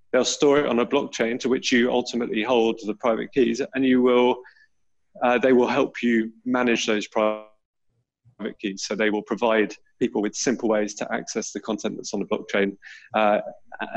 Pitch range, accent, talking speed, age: 105-120 Hz, British, 185 wpm, 20-39